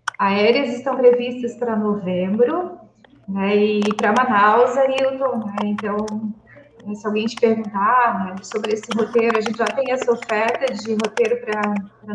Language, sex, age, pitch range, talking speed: Portuguese, female, 30-49, 215-260 Hz, 140 wpm